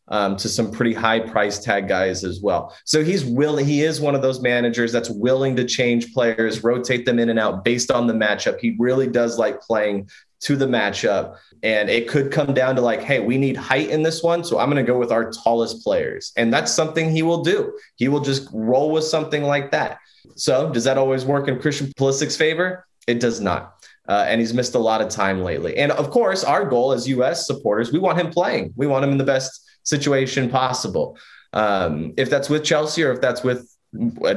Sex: male